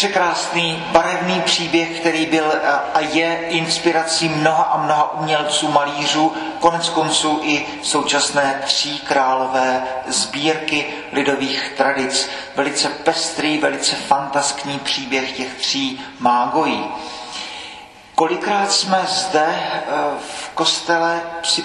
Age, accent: 40-59, native